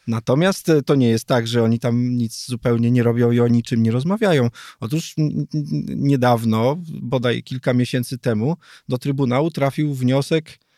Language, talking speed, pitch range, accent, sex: Polish, 150 wpm, 120-150 Hz, native, male